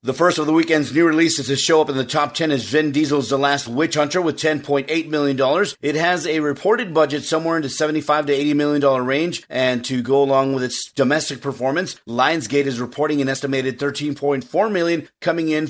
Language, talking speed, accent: English, 205 wpm, American